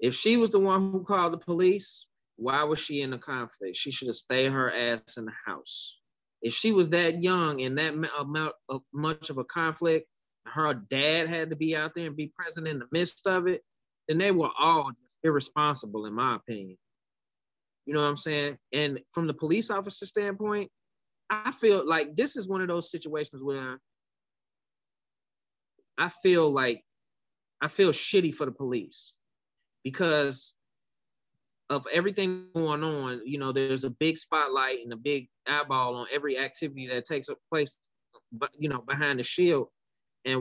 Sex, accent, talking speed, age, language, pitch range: male, American, 170 wpm, 20-39, English, 140-210 Hz